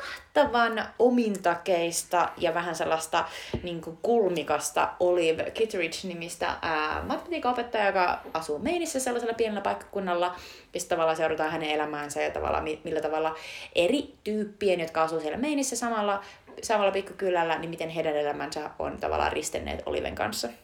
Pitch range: 155-215 Hz